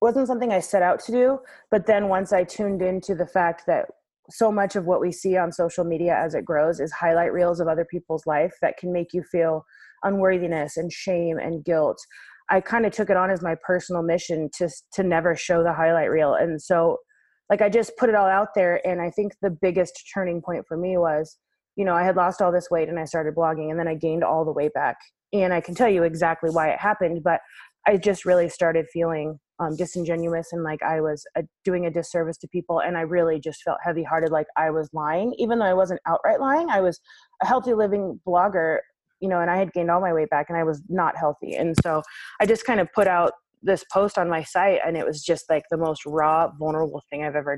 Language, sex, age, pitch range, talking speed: English, female, 20-39, 160-190 Hz, 240 wpm